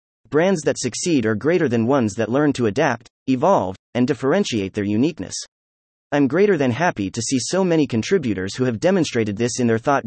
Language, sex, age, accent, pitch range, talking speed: English, male, 30-49, American, 105-150 Hz, 190 wpm